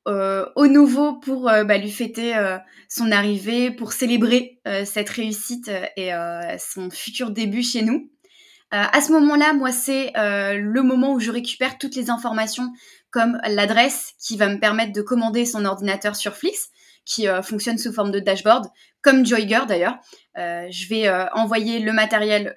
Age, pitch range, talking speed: 20-39, 210-250 Hz, 175 wpm